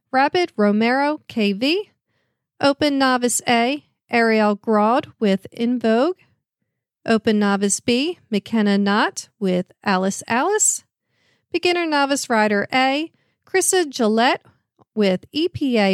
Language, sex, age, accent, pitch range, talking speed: English, female, 40-59, American, 215-290 Hz, 100 wpm